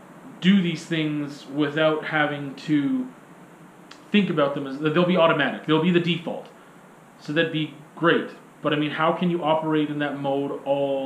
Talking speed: 175 wpm